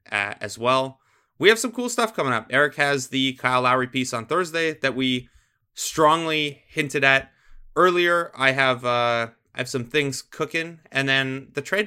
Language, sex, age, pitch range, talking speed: English, male, 20-39, 115-140 Hz, 180 wpm